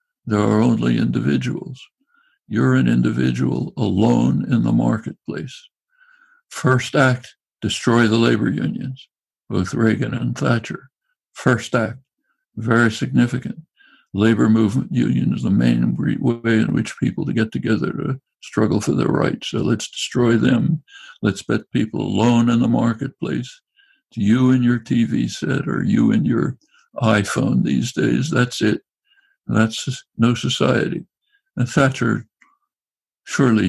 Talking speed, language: 135 wpm, English